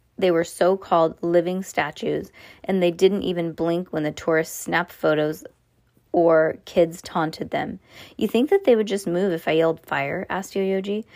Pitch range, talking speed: 165-220 Hz, 170 wpm